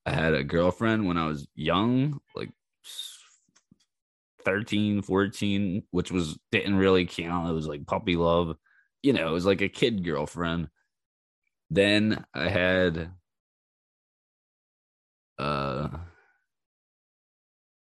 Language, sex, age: English, male, 20-39